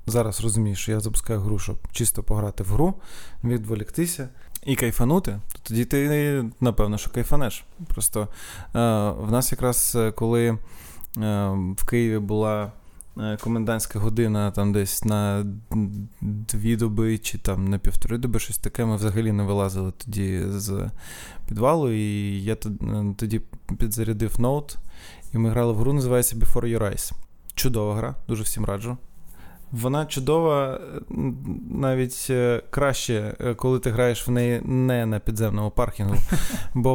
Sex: male